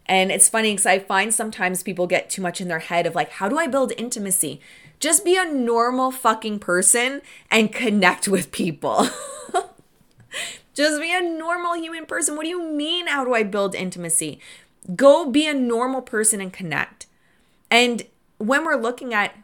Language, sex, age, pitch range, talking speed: English, female, 20-39, 185-255 Hz, 180 wpm